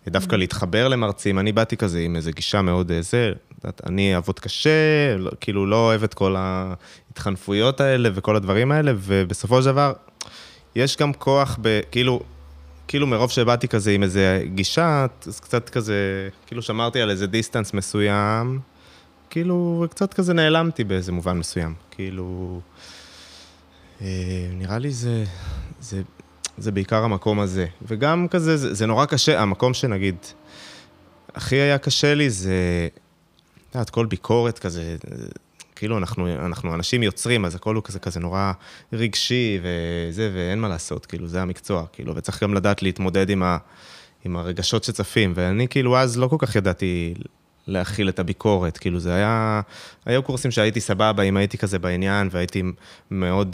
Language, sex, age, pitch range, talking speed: Hebrew, male, 20-39, 90-120 Hz, 150 wpm